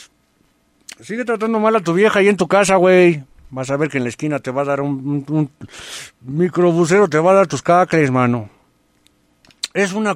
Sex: male